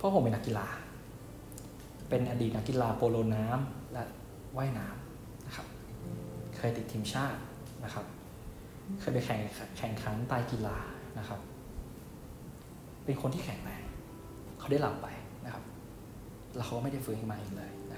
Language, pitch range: Thai, 105-130 Hz